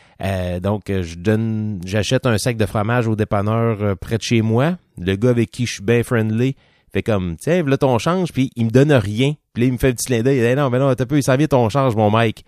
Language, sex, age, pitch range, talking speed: French, male, 30-49, 105-130 Hz, 295 wpm